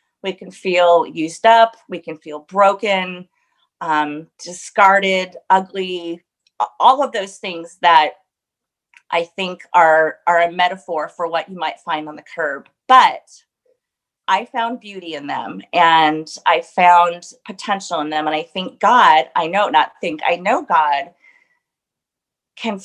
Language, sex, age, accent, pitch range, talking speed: English, female, 30-49, American, 165-200 Hz, 140 wpm